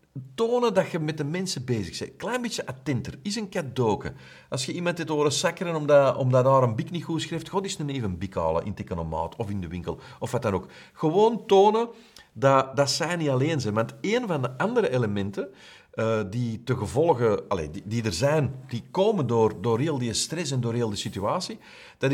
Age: 50-69